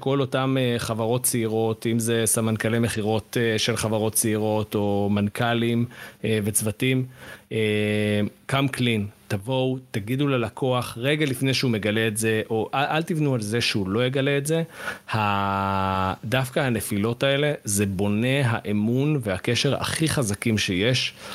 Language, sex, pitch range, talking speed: Hebrew, male, 105-130 Hz, 125 wpm